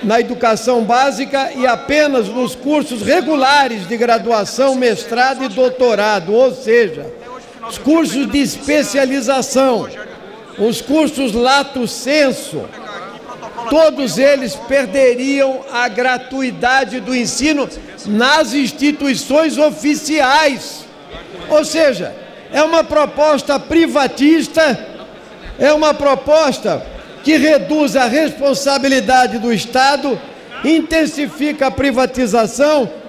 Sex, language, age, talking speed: male, Portuguese, 60-79, 90 wpm